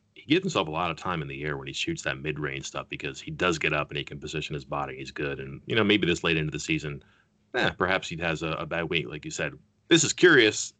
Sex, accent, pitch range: male, American, 75-95 Hz